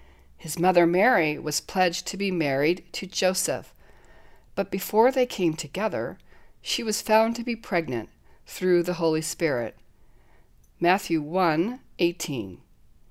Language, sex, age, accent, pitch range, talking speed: English, female, 60-79, American, 155-200 Hz, 130 wpm